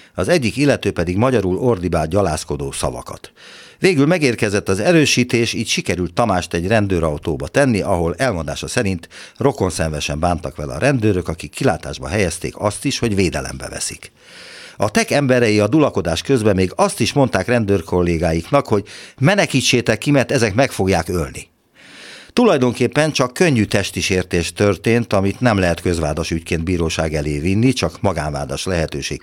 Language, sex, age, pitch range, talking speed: Hungarian, male, 60-79, 85-125 Hz, 140 wpm